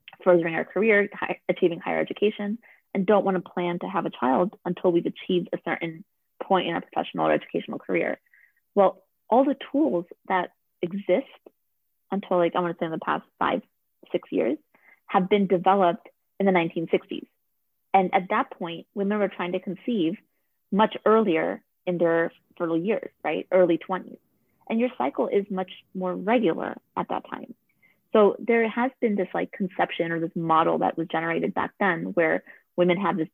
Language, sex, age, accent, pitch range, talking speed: English, female, 20-39, American, 175-215 Hz, 175 wpm